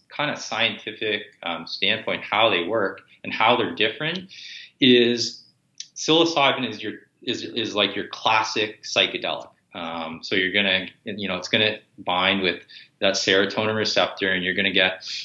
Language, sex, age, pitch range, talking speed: English, male, 20-39, 100-135 Hz, 155 wpm